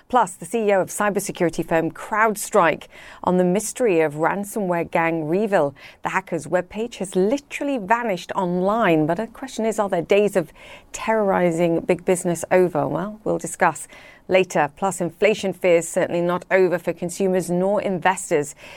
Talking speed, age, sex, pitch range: 155 wpm, 40-59, female, 165-205 Hz